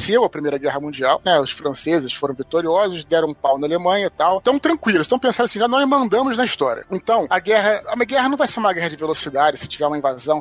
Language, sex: Portuguese, male